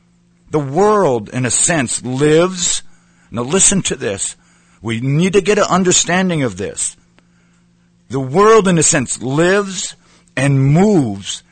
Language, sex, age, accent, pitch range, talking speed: English, male, 50-69, American, 115-175 Hz, 135 wpm